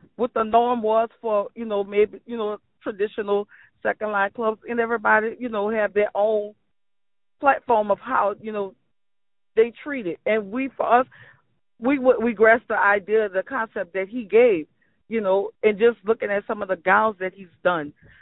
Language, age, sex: English, 40-59, female